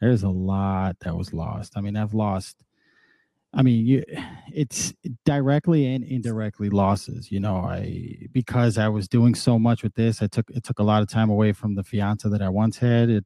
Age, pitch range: 20-39, 100-120 Hz